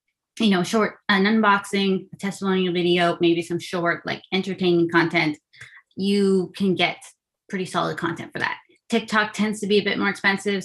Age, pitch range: 20-39, 165-195 Hz